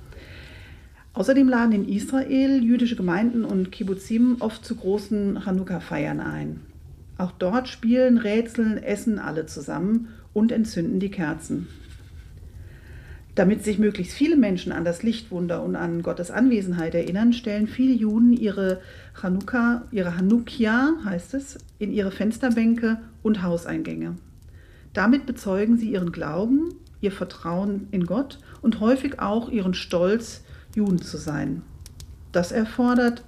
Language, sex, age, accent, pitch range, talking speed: German, female, 40-59, German, 175-240 Hz, 125 wpm